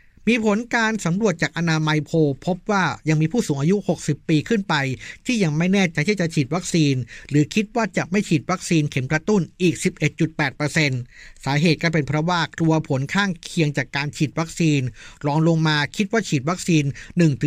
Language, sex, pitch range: Thai, male, 145-180 Hz